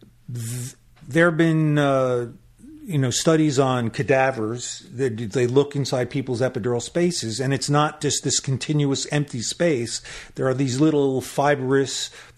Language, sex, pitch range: English, male, 120-150 Hz